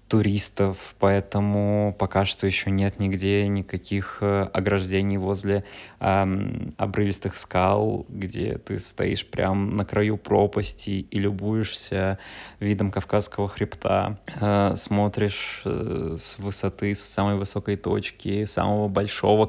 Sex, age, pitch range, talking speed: male, 20-39, 95-105 Hz, 110 wpm